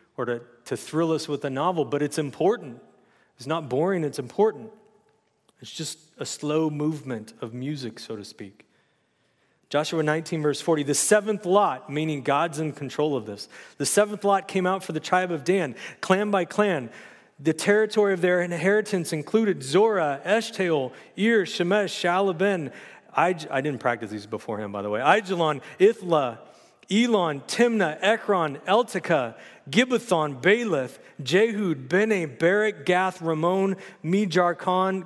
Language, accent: English, American